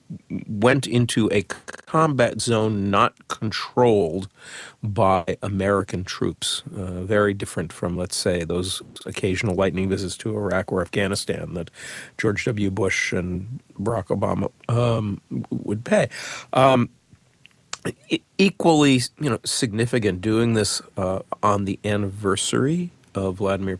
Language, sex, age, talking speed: English, male, 50-69, 115 wpm